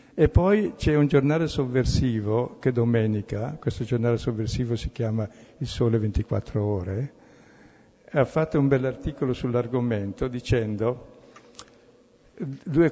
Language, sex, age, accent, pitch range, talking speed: Italian, male, 60-79, native, 115-145 Hz, 110 wpm